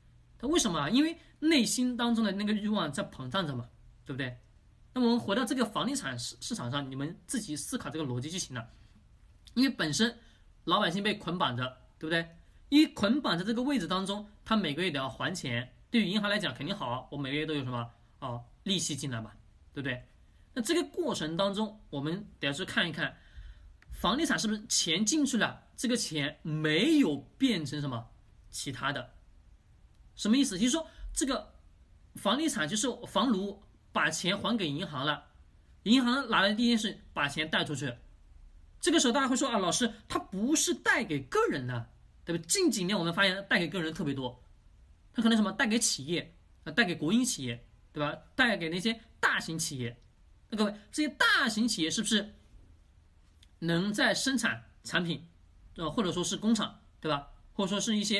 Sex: male